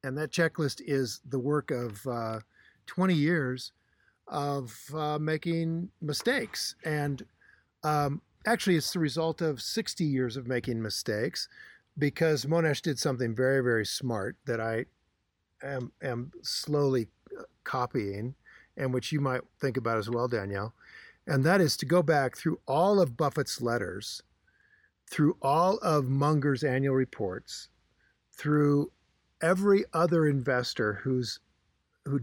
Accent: American